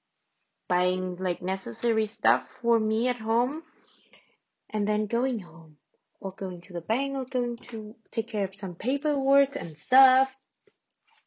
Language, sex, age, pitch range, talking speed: English, female, 20-39, 195-285 Hz, 145 wpm